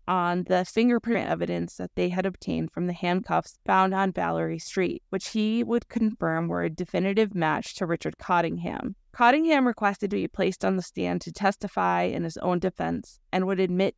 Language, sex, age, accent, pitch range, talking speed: English, female, 20-39, American, 165-200 Hz, 185 wpm